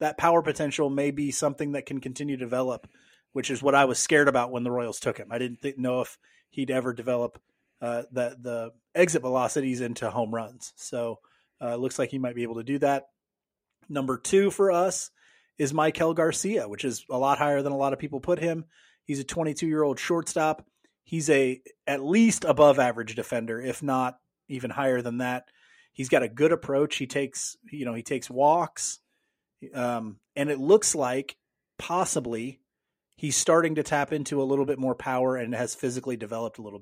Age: 30-49